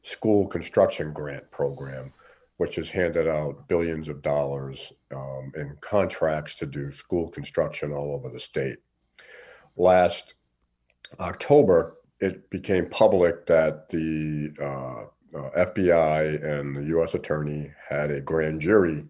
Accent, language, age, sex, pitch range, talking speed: American, English, 50-69, male, 70-80 Hz, 125 wpm